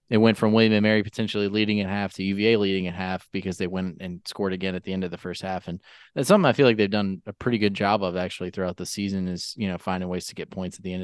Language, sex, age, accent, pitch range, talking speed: English, male, 20-39, American, 95-115 Hz, 305 wpm